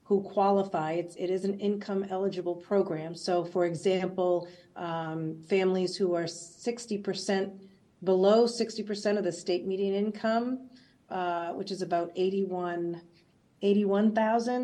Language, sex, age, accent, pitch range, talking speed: English, female, 40-59, American, 170-195 Hz, 120 wpm